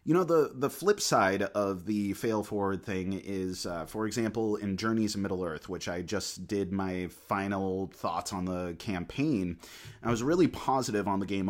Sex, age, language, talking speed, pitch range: male, 30-49, English, 195 wpm, 95-110 Hz